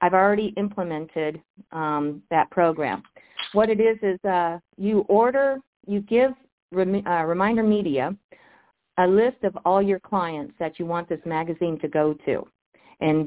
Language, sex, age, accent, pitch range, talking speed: English, female, 50-69, American, 170-205 Hz, 150 wpm